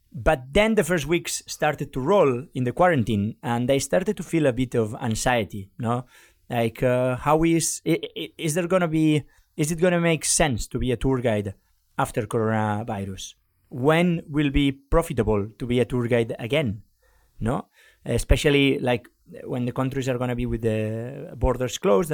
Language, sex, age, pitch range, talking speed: English, male, 30-49, 115-140 Hz, 180 wpm